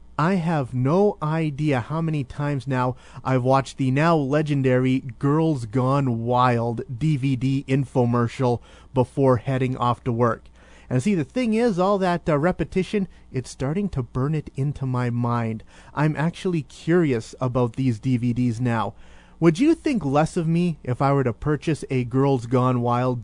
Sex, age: male, 30-49